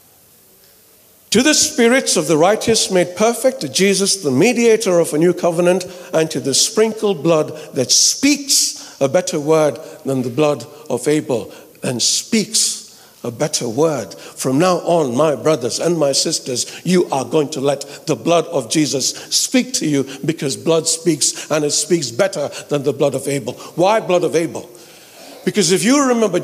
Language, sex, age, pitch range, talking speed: English, male, 60-79, 140-200 Hz, 170 wpm